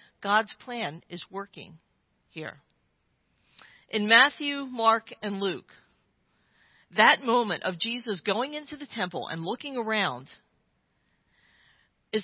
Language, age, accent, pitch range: English, 50-69, American, 185-240 Hz